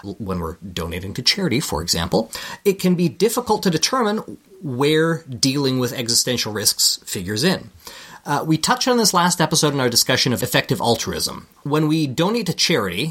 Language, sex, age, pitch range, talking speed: English, male, 30-49, 115-165 Hz, 175 wpm